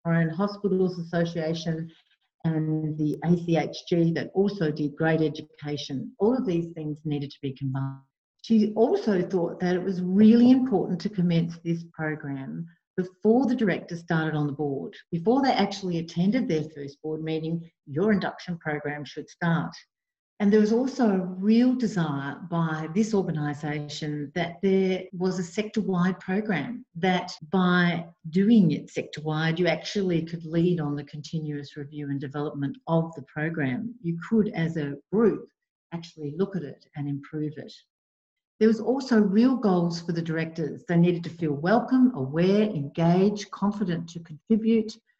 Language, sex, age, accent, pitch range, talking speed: English, female, 50-69, Australian, 155-200 Hz, 155 wpm